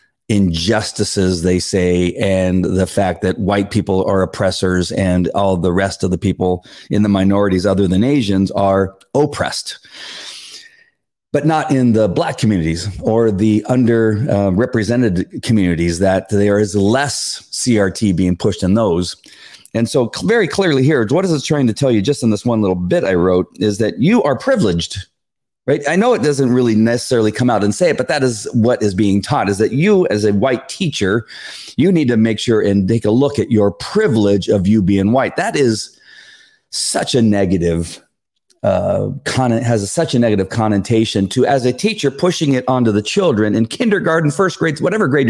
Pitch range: 95-125 Hz